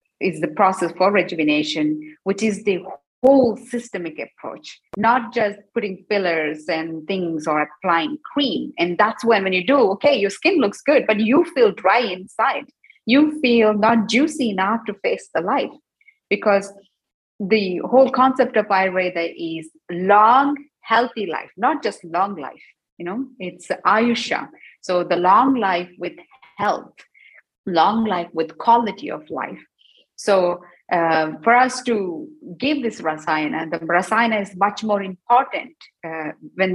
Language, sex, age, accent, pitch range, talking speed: German, female, 30-49, Indian, 170-230 Hz, 150 wpm